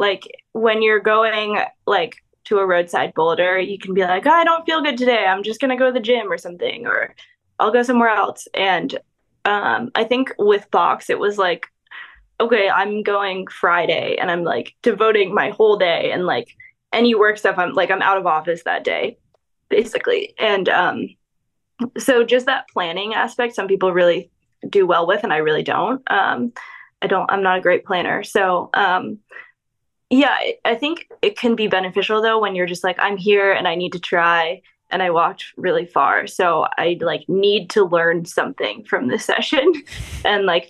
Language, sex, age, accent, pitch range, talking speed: English, female, 10-29, American, 185-270 Hz, 195 wpm